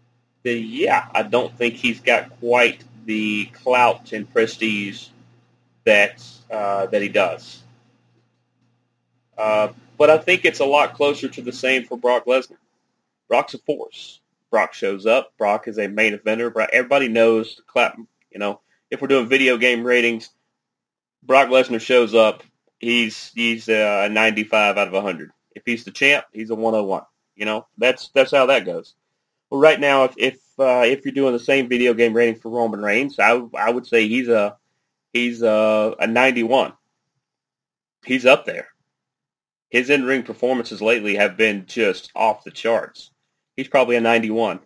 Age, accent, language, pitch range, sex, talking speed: 30-49, American, English, 110-130 Hz, male, 165 wpm